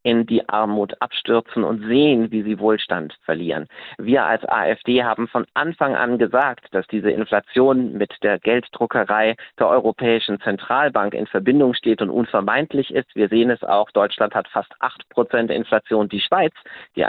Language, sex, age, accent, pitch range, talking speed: German, male, 50-69, German, 100-120 Hz, 160 wpm